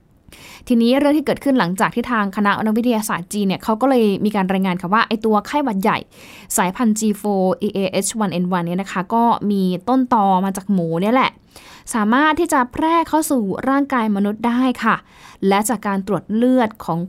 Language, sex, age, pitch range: Thai, female, 10-29, 190-230 Hz